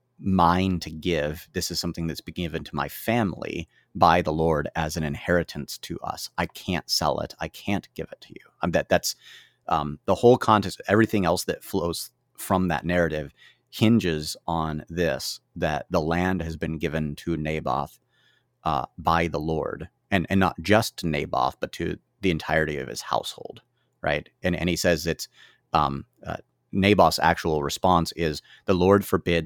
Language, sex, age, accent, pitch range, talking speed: English, male, 30-49, American, 80-90 Hz, 175 wpm